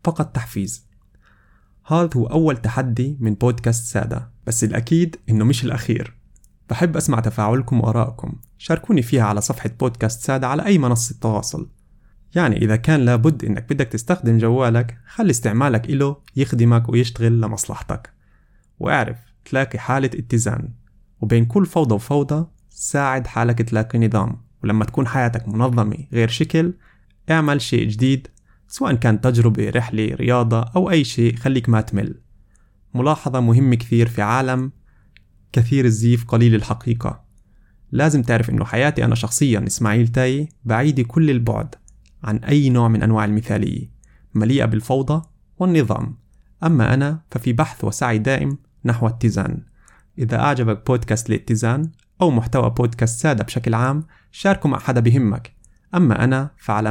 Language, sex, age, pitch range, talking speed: Arabic, male, 20-39, 110-135 Hz, 135 wpm